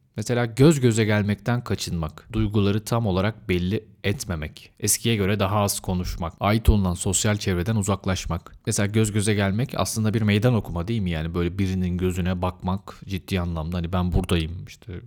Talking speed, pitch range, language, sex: 165 wpm, 95-115 Hz, Turkish, male